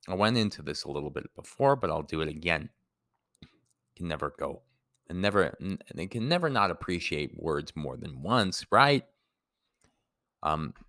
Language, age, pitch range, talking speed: English, 30-49, 75-115 Hz, 160 wpm